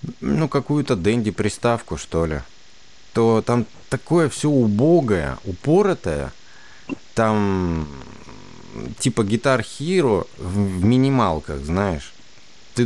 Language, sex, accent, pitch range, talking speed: Russian, male, native, 95-135 Hz, 90 wpm